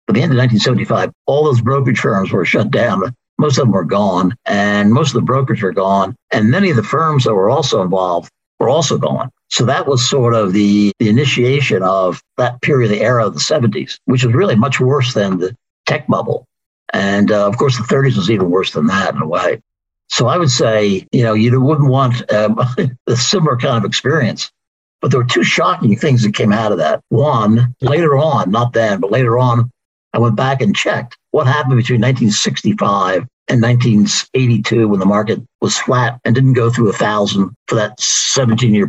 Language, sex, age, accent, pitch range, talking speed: English, male, 60-79, American, 105-130 Hz, 205 wpm